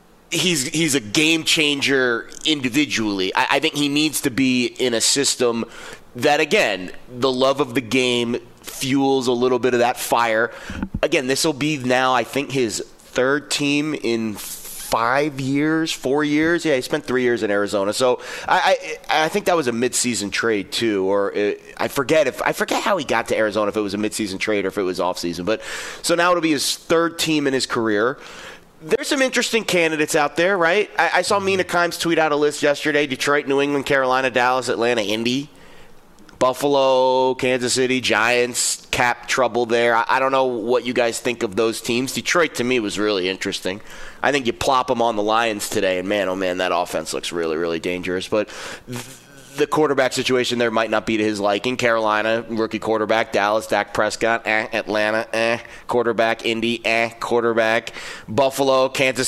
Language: English